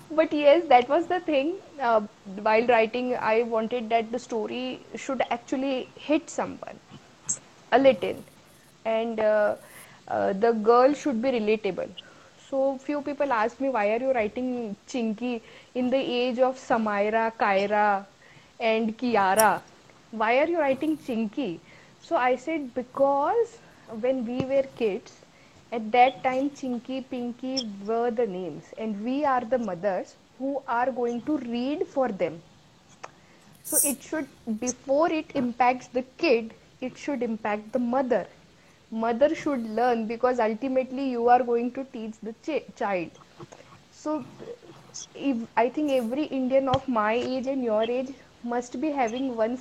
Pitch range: 225-270 Hz